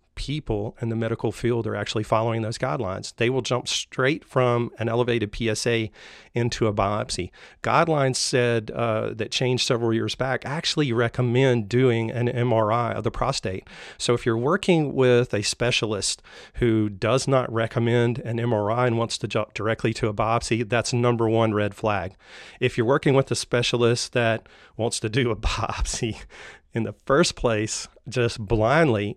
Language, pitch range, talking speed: English, 110-125 Hz, 165 wpm